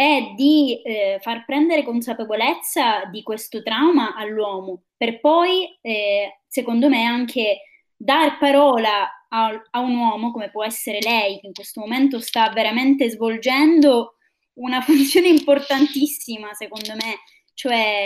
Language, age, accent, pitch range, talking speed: Italian, 20-39, native, 220-275 Hz, 130 wpm